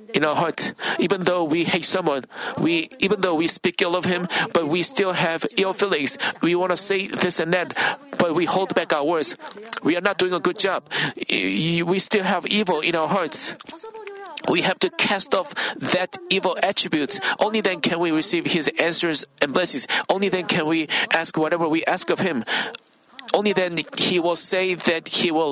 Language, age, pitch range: Korean, 50-69, 165-200 Hz